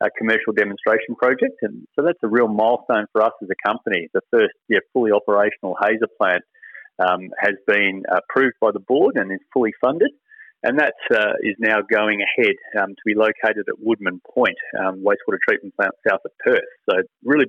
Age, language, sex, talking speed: 30-49, English, male, 190 wpm